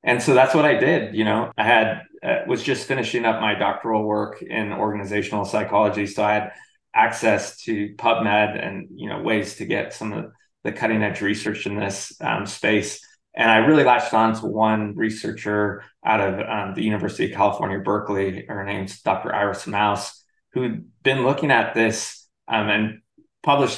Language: English